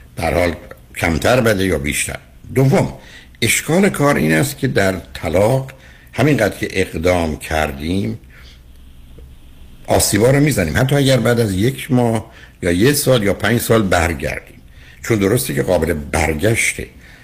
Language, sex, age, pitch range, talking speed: Persian, male, 60-79, 75-110 Hz, 130 wpm